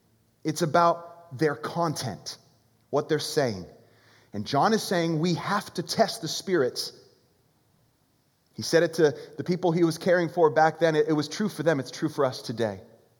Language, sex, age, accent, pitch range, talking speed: English, male, 30-49, American, 135-180 Hz, 175 wpm